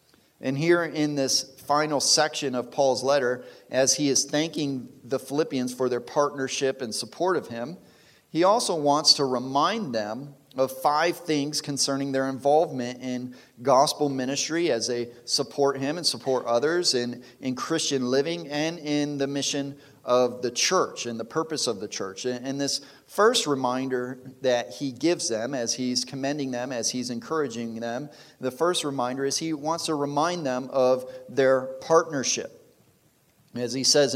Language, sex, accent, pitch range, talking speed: English, male, American, 130-150 Hz, 165 wpm